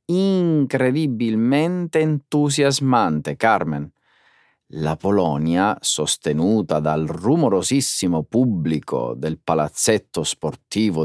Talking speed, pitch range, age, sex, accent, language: 65 wpm, 80-130 Hz, 30-49, male, native, Italian